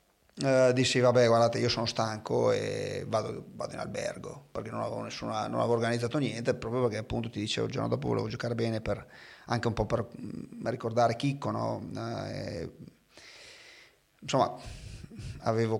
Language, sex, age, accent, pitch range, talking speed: Italian, male, 30-49, native, 110-135 Hz, 165 wpm